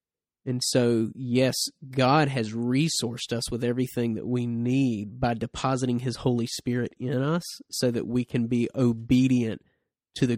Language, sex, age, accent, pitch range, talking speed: English, male, 20-39, American, 115-135 Hz, 155 wpm